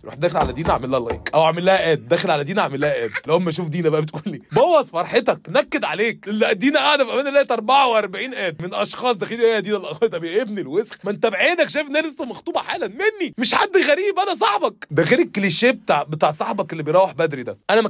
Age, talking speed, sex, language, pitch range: 20-39, 240 wpm, male, Arabic, 165-240 Hz